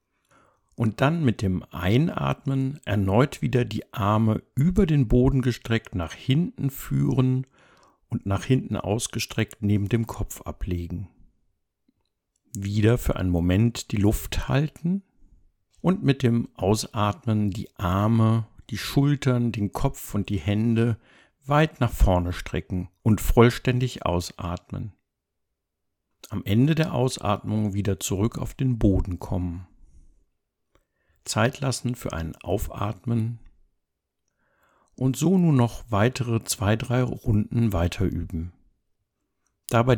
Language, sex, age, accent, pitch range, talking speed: German, male, 60-79, German, 90-125 Hz, 115 wpm